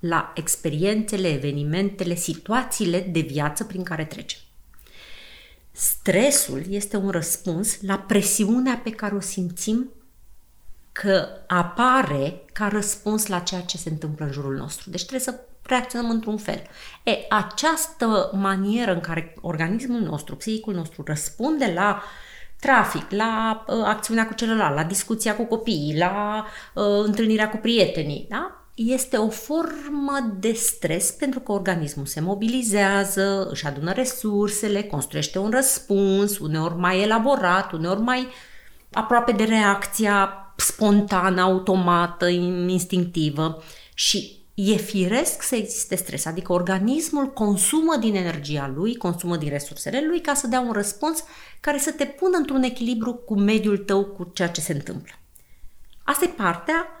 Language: Romanian